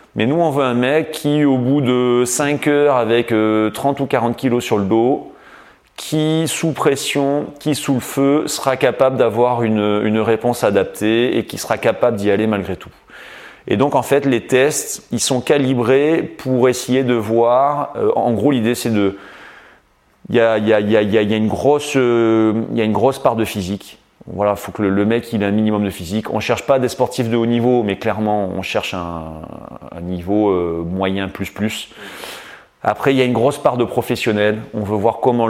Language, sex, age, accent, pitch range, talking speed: French, male, 30-49, French, 105-125 Hz, 195 wpm